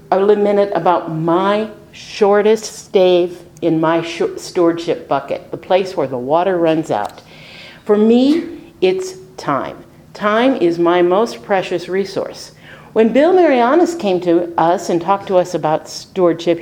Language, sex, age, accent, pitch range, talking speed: English, female, 50-69, American, 165-255 Hz, 140 wpm